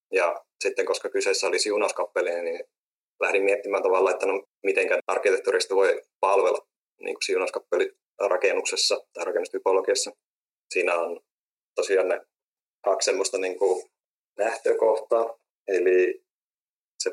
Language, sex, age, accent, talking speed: Finnish, male, 30-49, native, 110 wpm